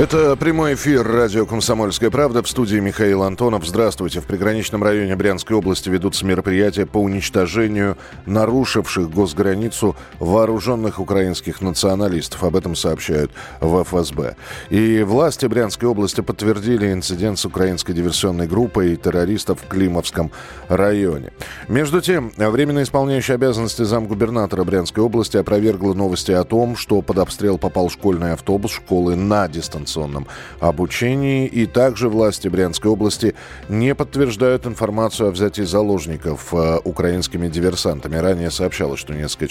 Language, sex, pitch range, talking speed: Russian, male, 90-115 Hz, 130 wpm